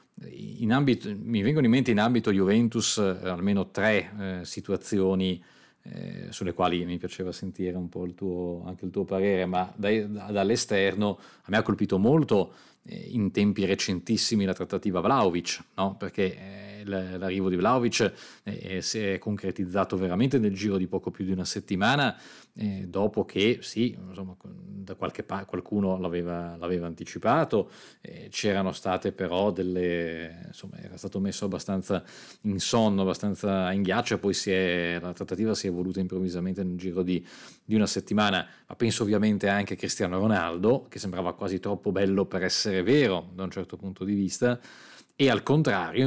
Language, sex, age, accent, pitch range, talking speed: Italian, male, 40-59, native, 90-105 Hz, 170 wpm